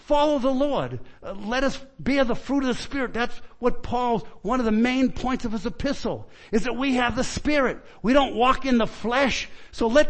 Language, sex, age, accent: English, male, 50-69, American